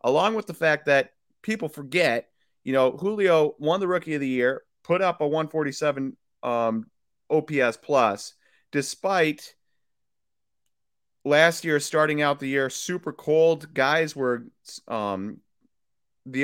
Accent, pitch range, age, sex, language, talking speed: American, 130-160 Hz, 30-49, male, English, 130 wpm